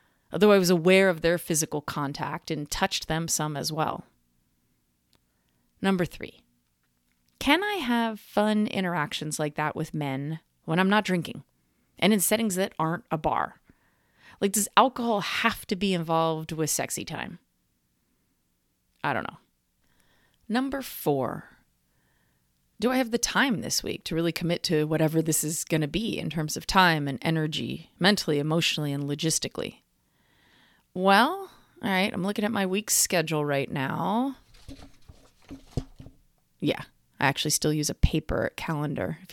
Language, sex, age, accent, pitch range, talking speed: English, female, 30-49, American, 150-210 Hz, 150 wpm